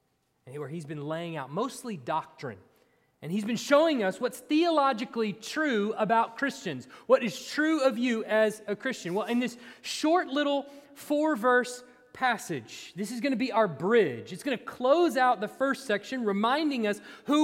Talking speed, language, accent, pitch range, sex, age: 170 wpm, English, American, 170-260 Hz, male, 30-49